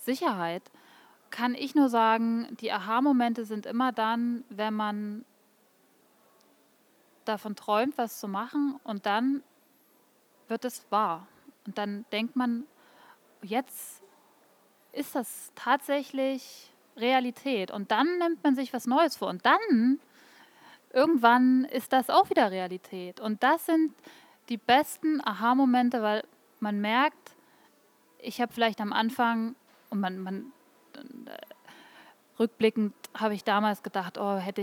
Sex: female